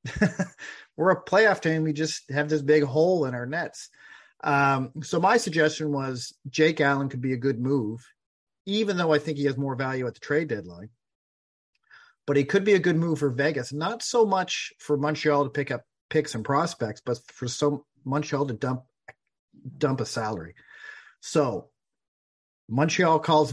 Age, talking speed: 40-59, 175 wpm